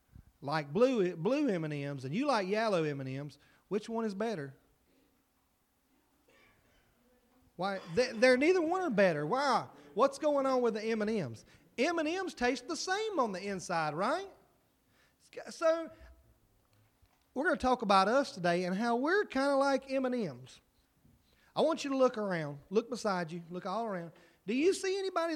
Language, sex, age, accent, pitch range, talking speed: English, male, 40-59, American, 190-260 Hz, 155 wpm